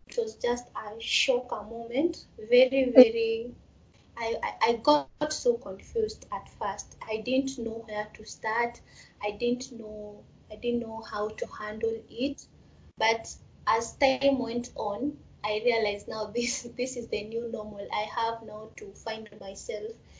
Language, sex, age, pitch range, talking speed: English, female, 20-39, 220-280 Hz, 150 wpm